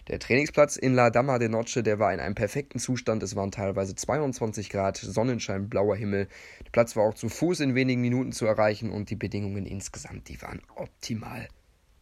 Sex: male